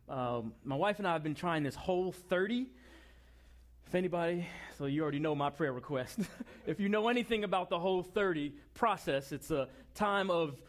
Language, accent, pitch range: English, American, 145-220 Hz